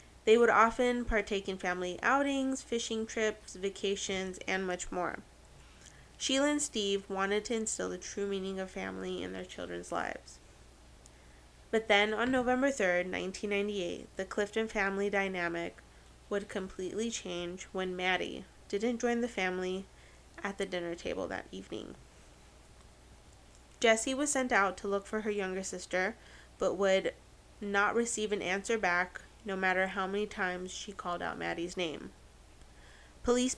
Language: English